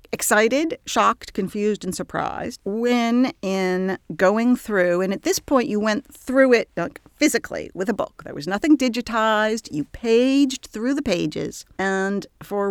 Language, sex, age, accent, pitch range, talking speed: English, female, 50-69, American, 185-260 Hz, 155 wpm